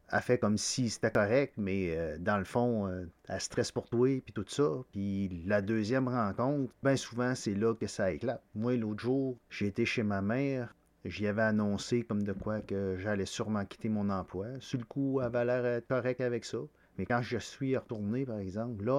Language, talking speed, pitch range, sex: French, 215 wpm, 110-135 Hz, male